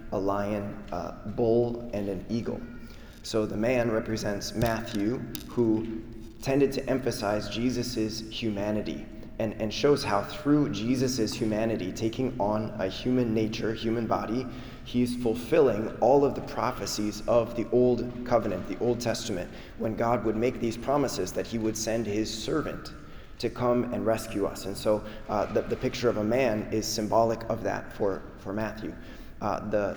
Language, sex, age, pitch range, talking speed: English, male, 20-39, 105-120 Hz, 160 wpm